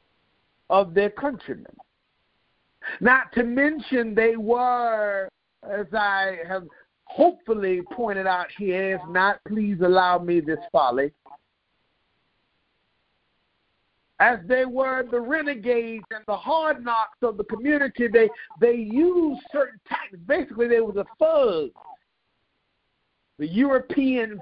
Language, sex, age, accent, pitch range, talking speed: English, male, 50-69, American, 190-260 Hz, 115 wpm